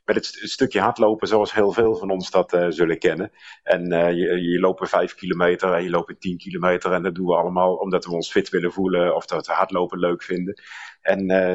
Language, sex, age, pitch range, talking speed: Dutch, male, 50-69, 90-115 Hz, 225 wpm